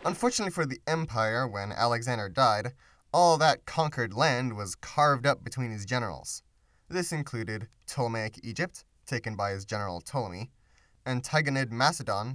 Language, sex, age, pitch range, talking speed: English, male, 20-39, 105-140 Hz, 135 wpm